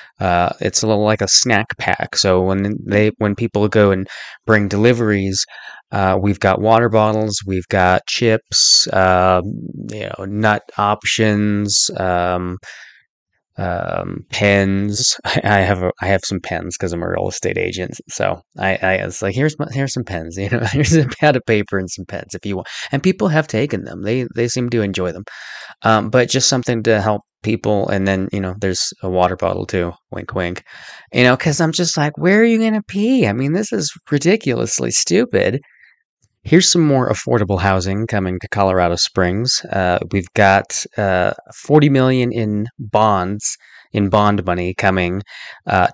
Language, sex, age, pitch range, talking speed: English, male, 20-39, 95-120 Hz, 180 wpm